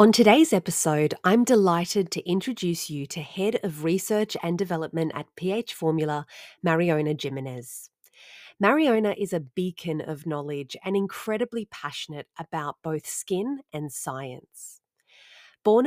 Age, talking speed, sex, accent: 30-49, 130 wpm, female, Australian